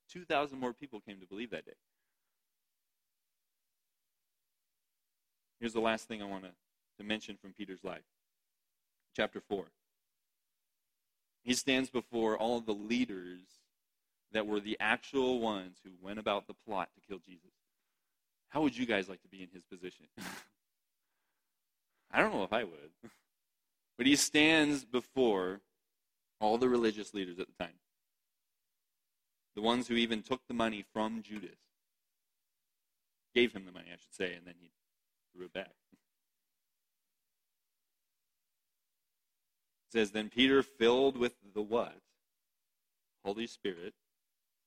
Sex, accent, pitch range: male, American, 100-125 Hz